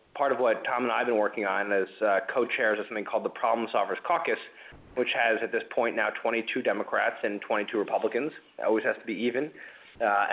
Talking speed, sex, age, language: 215 wpm, male, 30-49, English